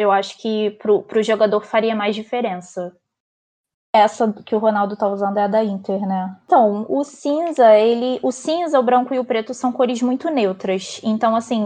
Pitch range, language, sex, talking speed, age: 210-265 Hz, Portuguese, female, 190 wpm, 20-39